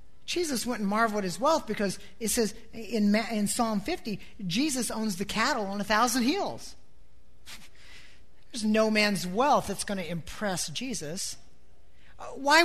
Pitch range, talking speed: 165-255 Hz, 145 wpm